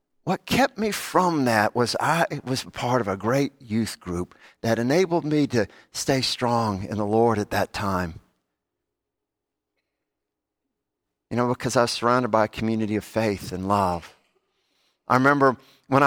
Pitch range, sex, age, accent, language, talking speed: 115-150 Hz, male, 50-69, American, English, 155 wpm